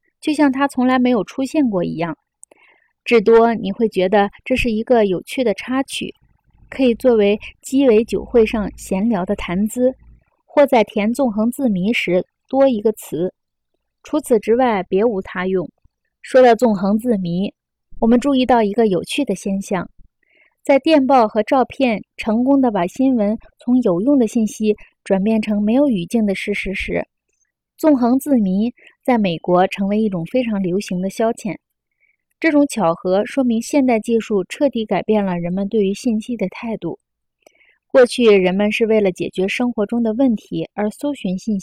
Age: 20-39